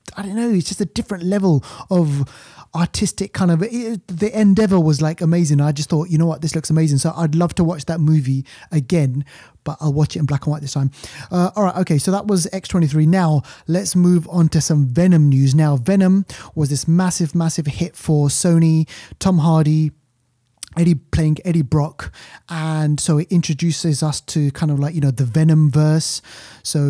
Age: 20-39